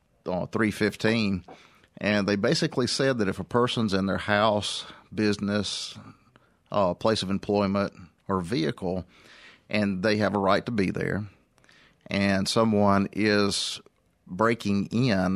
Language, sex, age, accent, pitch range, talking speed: English, male, 40-59, American, 95-110 Hz, 125 wpm